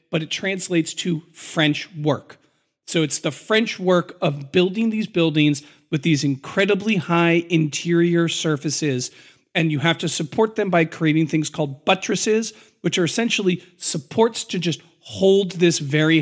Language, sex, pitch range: English, male, 155-195 Hz